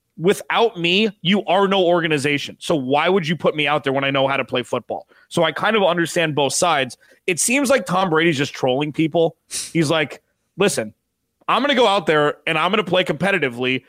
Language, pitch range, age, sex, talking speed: English, 150-195 Hz, 30-49, male, 220 wpm